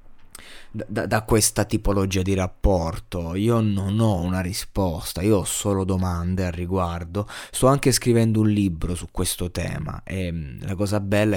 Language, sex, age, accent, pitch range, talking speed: Italian, male, 20-39, native, 90-105 Hz, 160 wpm